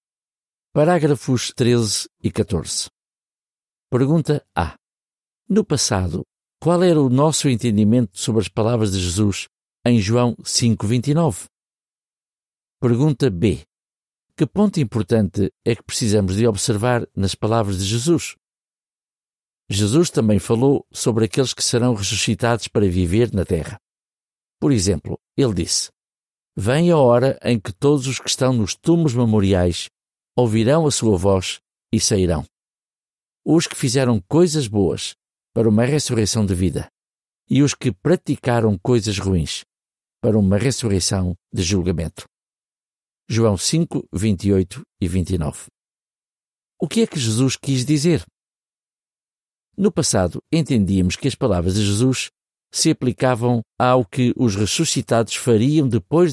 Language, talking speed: Portuguese, 125 wpm